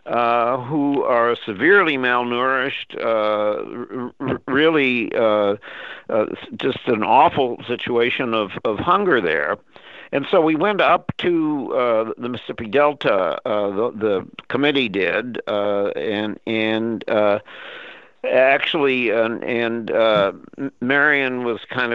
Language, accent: English, American